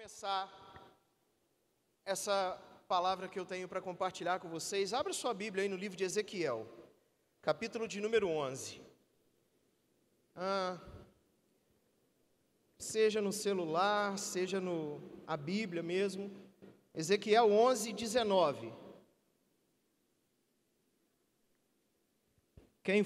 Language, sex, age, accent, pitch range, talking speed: Gujarati, male, 40-59, Brazilian, 190-245 Hz, 90 wpm